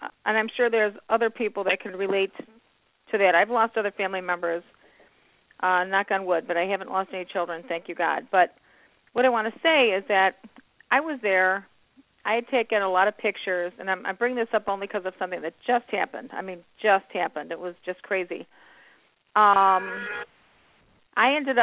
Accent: American